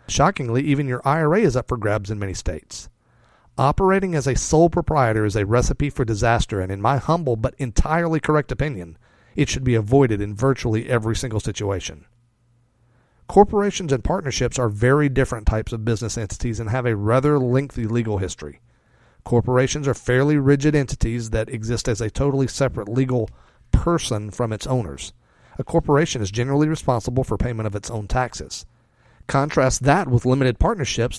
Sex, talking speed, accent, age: male, 165 wpm, American, 40-59